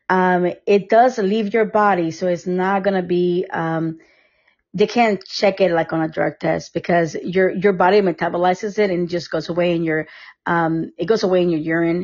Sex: female